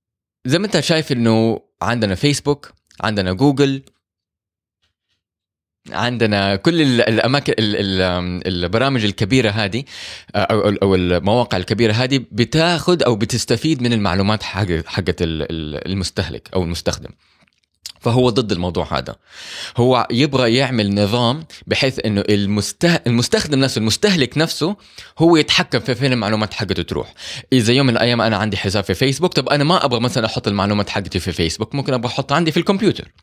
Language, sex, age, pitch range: Arabic, male, 20-39, 95-130 Hz